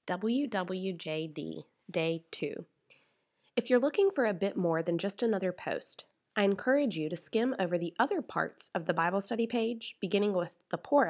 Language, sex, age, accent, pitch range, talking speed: English, female, 20-39, American, 170-225 Hz, 175 wpm